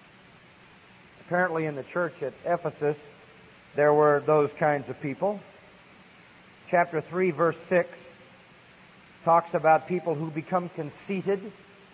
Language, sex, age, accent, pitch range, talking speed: English, male, 40-59, American, 155-195 Hz, 110 wpm